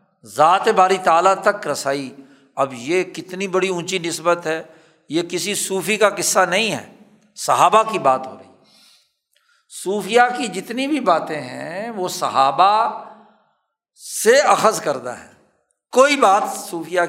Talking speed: 135 wpm